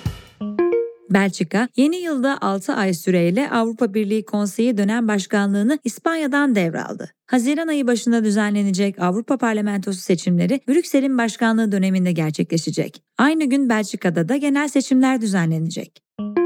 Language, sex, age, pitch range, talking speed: Turkish, female, 30-49, 190-255 Hz, 115 wpm